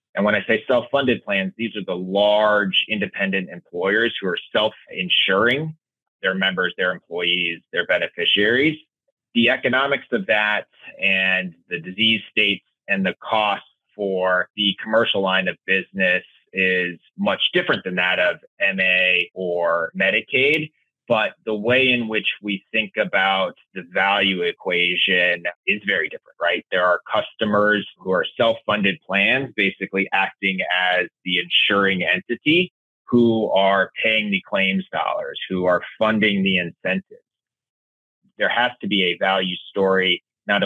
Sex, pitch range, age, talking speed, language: male, 90-115 Hz, 30-49, 140 wpm, English